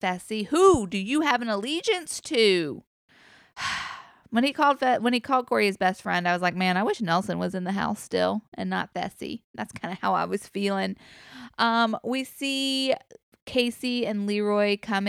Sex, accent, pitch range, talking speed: female, American, 185-245 Hz, 185 wpm